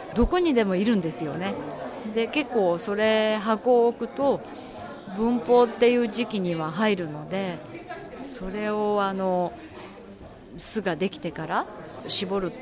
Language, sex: Japanese, female